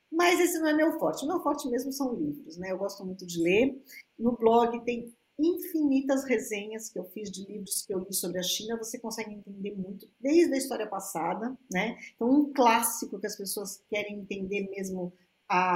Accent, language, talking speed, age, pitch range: Brazilian, Portuguese, 200 wpm, 50-69, 190-235 Hz